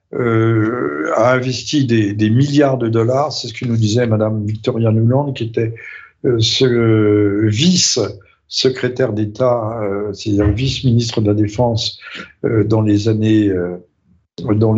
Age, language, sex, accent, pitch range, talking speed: 50-69, French, male, French, 110-130 Hz, 140 wpm